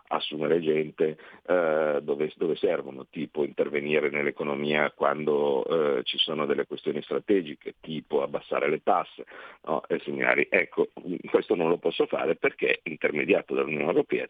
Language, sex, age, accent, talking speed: Italian, male, 50-69, native, 140 wpm